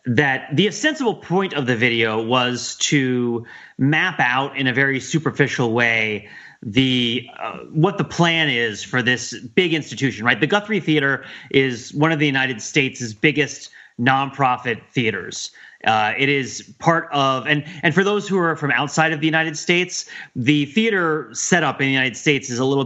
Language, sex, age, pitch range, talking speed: English, male, 30-49, 125-160 Hz, 175 wpm